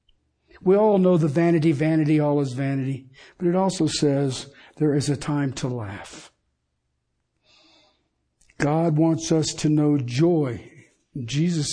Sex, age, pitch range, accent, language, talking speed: male, 60-79, 140-180 Hz, American, English, 135 wpm